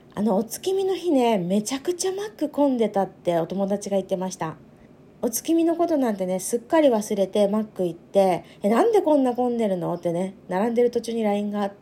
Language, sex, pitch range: Japanese, female, 180-240 Hz